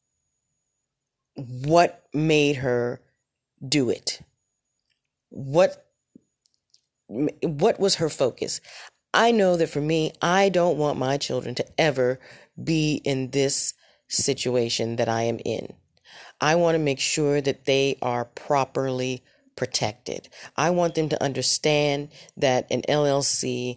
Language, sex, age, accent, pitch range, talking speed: English, female, 30-49, American, 125-155 Hz, 120 wpm